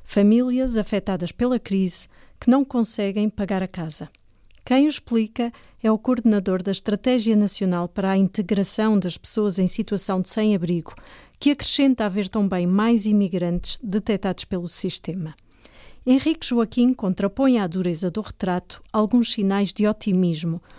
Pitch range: 185-235 Hz